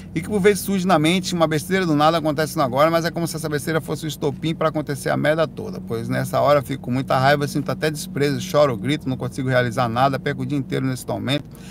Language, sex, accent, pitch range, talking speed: Portuguese, male, Brazilian, 135-165 Hz, 250 wpm